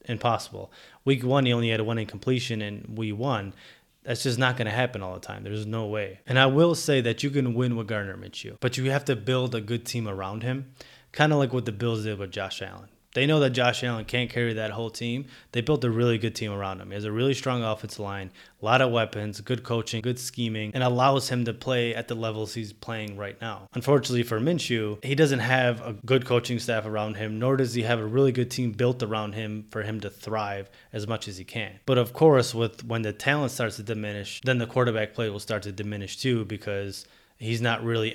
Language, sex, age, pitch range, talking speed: English, male, 20-39, 110-130 Hz, 245 wpm